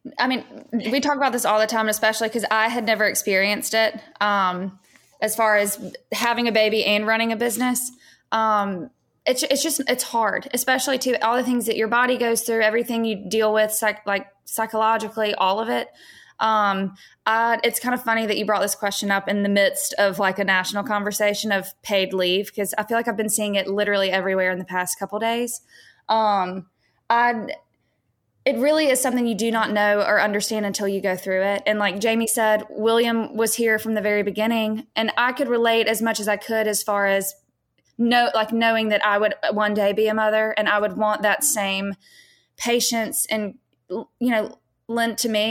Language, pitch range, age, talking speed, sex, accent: English, 205-235 Hz, 20-39, 205 wpm, female, American